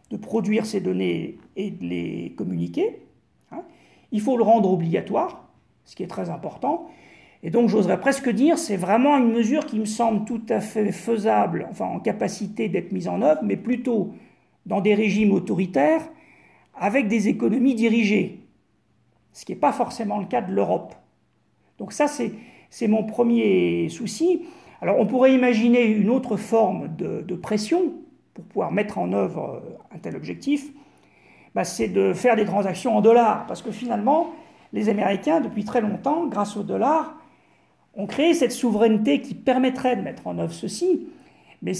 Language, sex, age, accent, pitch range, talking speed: French, male, 40-59, French, 200-265 Hz, 165 wpm